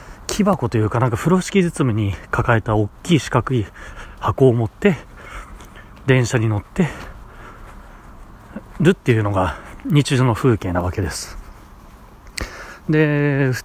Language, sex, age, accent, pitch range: Japanese, male, 30-49, native, 105-165 Hz